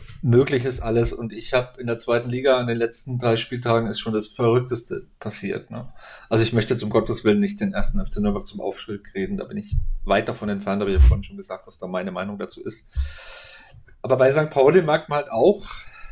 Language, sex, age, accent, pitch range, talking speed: German, male, 40-59, German, 115-135 Hz, 225 wpm